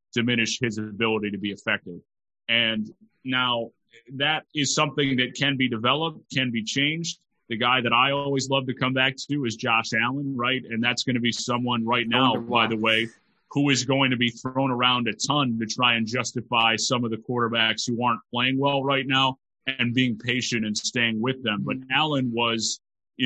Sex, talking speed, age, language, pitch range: male, 200 wpm, 30-49, English, 115-135 Hz